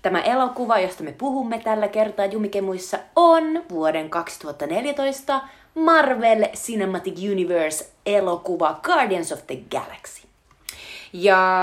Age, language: 30-49, Finnish